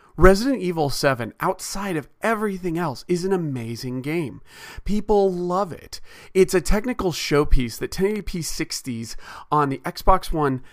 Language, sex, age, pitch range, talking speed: English, male, 40-59, 130-185 Hz, 140 wpm